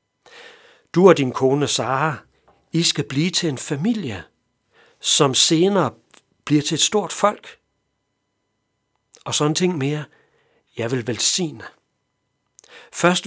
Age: 60-79